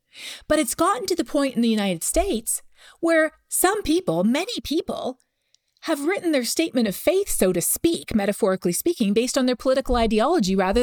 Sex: female